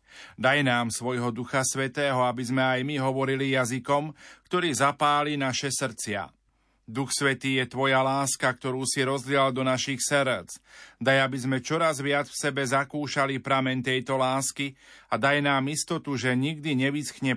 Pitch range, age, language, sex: 130-145 Hz, 40-59, Slovak, male